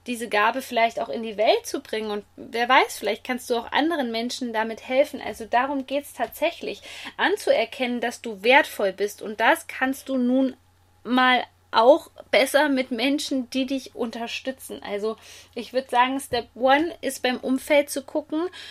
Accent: German